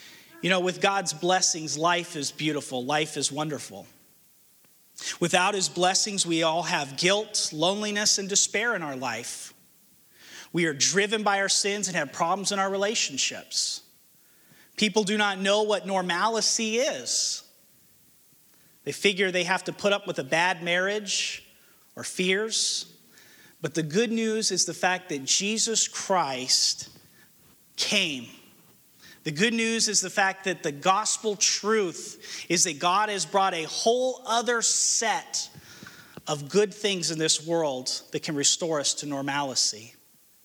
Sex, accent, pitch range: male, American, 150-200 Hz